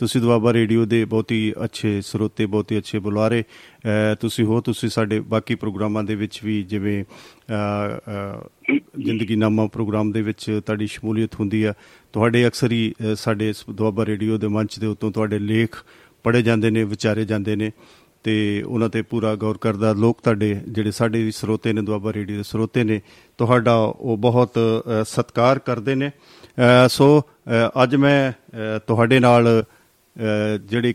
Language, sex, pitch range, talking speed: Punjabi, male, 110-120 Hz, 125 wpm